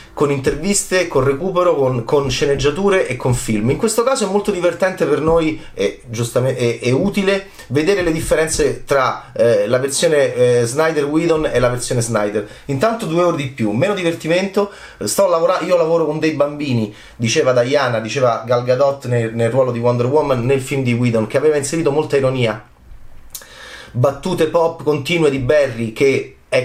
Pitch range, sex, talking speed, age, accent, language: 115-165 Hz, male, 175 wpm, 30-49, native, Italian